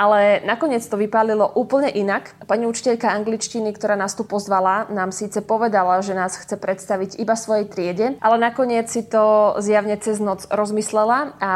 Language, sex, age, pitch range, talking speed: Slovak, female, 20-39, 195-225 Hz, 165 wpm